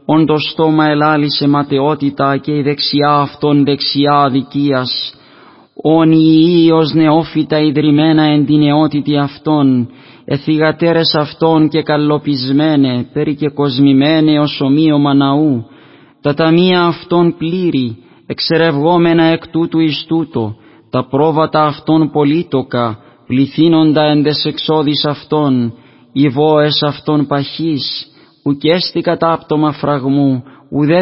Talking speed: 100 wpm